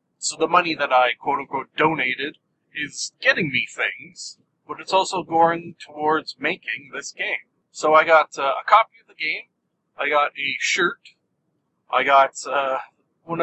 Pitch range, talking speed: 140-175 Hz, 160 wpm